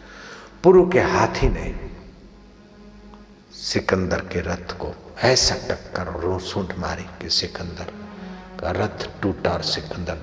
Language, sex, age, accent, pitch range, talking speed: Hindi, male, 60-79, native, 85-145 Hz, 115 wpm